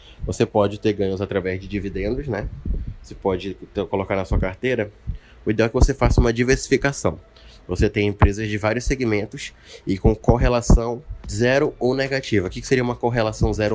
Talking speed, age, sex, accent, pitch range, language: 175 wpm, 20-39, male, Brazilian, 100-125 Hz, Portuguese